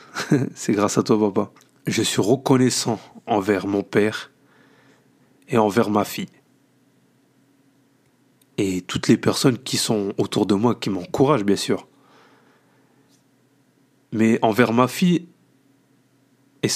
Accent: French